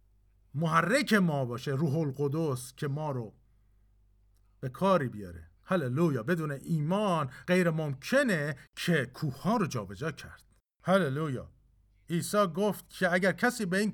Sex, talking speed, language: male, 135 wpm, Persian